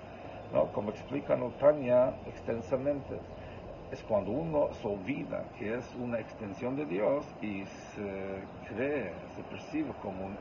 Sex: male